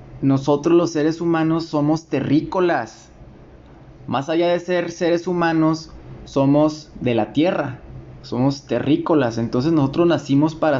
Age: 20-39